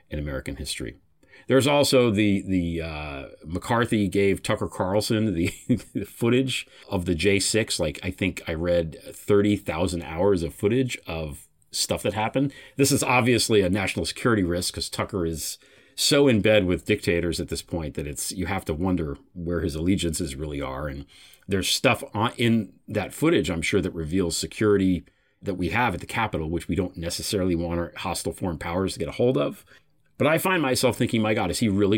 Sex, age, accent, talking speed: male, 40-59, American, 190 wpm